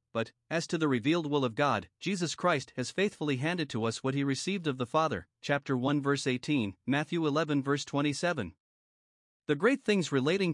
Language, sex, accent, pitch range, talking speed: English, male, American, 135-170 Hz, 190 wpm